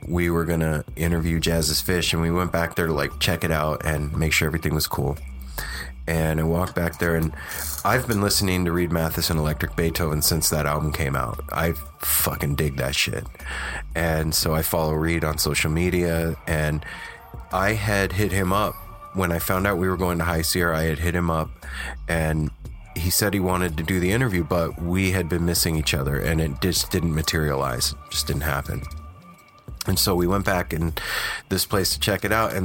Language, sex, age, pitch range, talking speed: English, male, 30-49, 80-95 Hz, 210 wpm